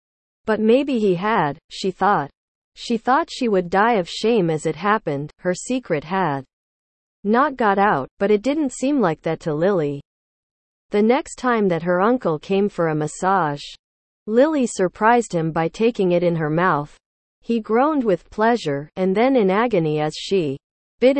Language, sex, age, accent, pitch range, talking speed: English, female, 40-59, American, 165-230 Hz, 170 wpm